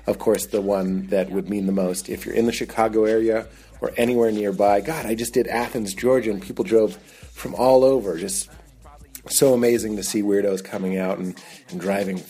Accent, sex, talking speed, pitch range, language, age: American, male, 200 wpm, 95-120 Hz, English, 30-49